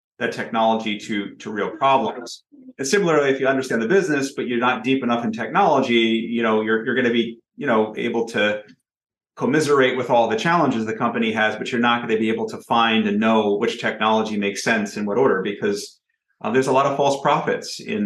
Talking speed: 220 wpm